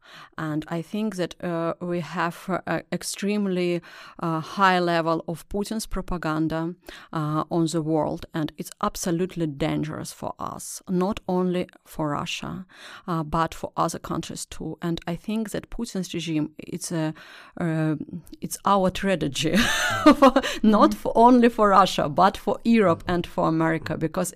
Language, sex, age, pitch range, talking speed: English, female, 30-49, 155-185 Hz, 150 wpm